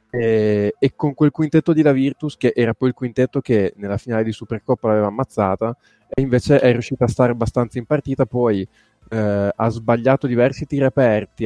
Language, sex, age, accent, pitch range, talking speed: Italian, male, 20-39, native, 115-130 Hz, 190 wpm